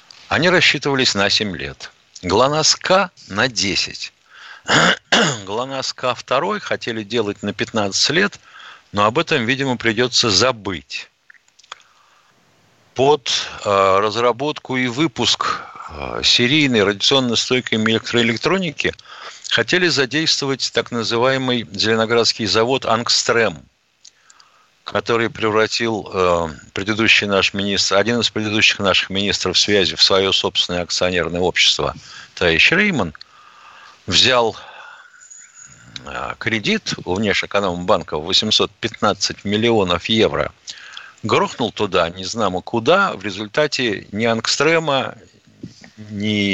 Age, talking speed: 60-79, 95 wpm